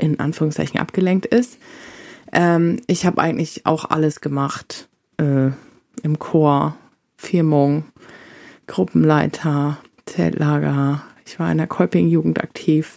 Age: 20-39